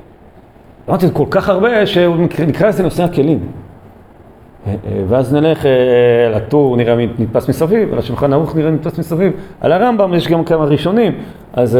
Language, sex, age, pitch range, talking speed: Hebrew, male, 40-59, 110-155 Hz, 135 wpm